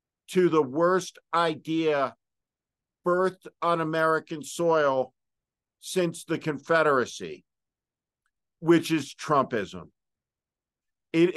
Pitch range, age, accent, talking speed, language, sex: 155-185 Hz, 50-69, American, 80 wpm, English, male